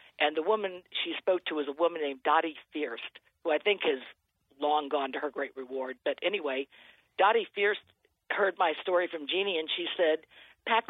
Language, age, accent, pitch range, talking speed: English, 50-69, American, 150-210 Hz, 195 wpm